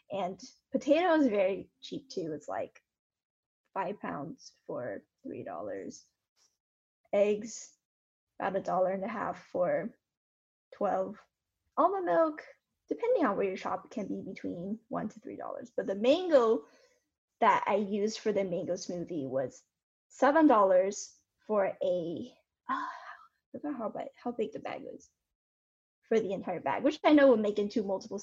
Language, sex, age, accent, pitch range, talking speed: English, female, 10-29, American, 195-275 Hz, 150 wpm